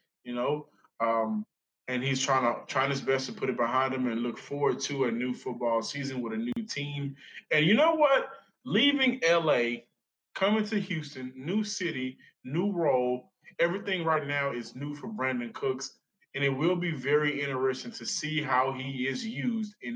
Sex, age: male, 20-39